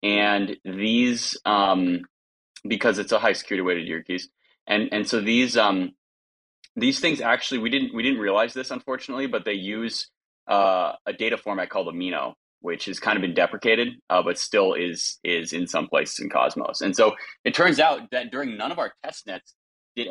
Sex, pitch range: male, 90-120 Hz